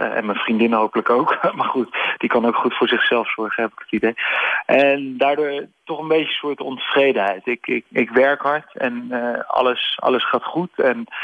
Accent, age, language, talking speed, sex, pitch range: Dutch, 40-59, Dutch, 205 wpm, male, 120-140 Hz